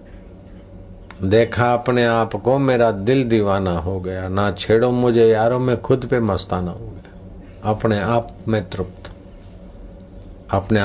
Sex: male